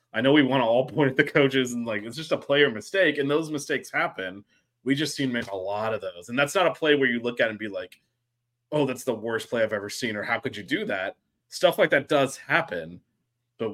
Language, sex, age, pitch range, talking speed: English, male, 20-39, 105-140 Hz, 275 wpm